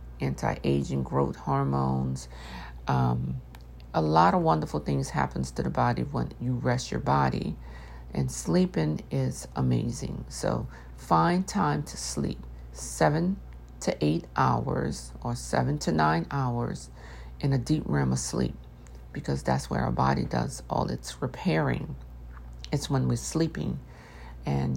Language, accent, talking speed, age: English, American, 135 wpm, 50-69